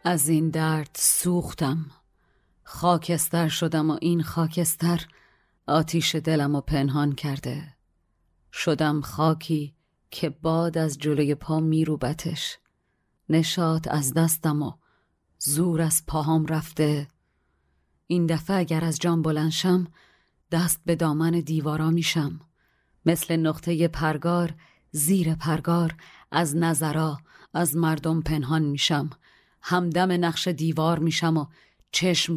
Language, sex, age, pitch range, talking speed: Persian, female, 30-49, 155-170 Hz, 110 wpm